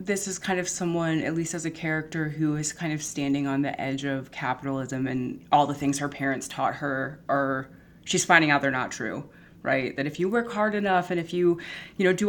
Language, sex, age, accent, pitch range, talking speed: English, female, 20-39, American, 135-165 Hz, 235 wpm